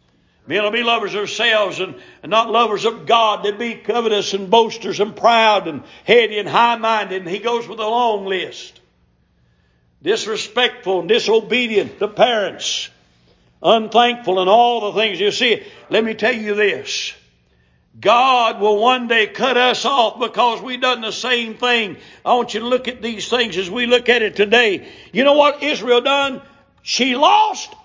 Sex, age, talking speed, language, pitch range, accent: male, 60-79, 175 wpm, English, 195-245 Hz, American